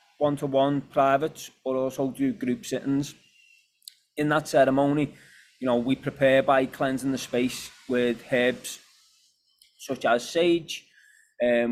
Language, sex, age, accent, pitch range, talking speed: English, male, 20-39, British, 120-140 Hz, 125 wpm